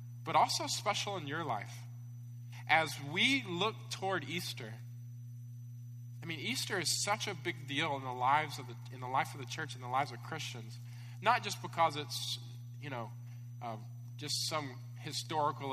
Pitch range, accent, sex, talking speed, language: 120-145 Hz, American, male, 170 wpm, English